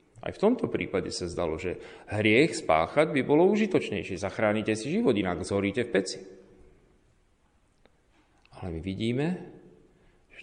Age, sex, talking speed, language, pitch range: 40-59, male, 130 wpm, Slovak, 100-145 Hz